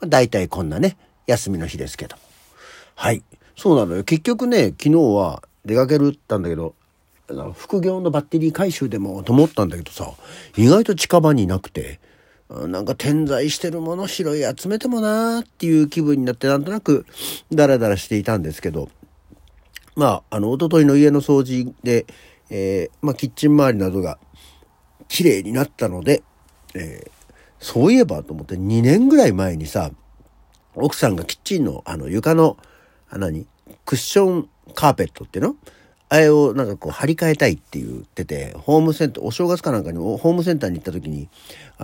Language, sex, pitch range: Japanese, male, 95-155 Hz